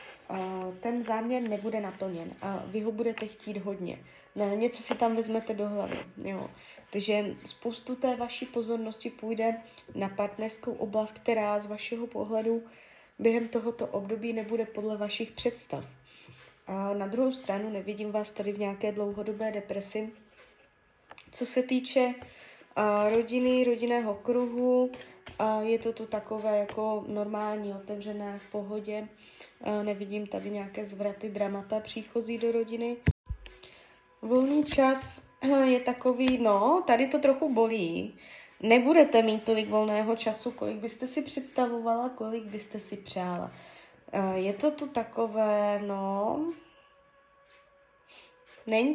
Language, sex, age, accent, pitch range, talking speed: Czech, female, 20-39, native, 210-240 Hz, 120 wpm